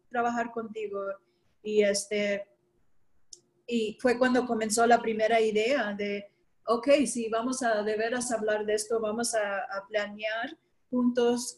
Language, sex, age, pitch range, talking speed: English, female, 40-59, 215-240 Hz, 140 wpm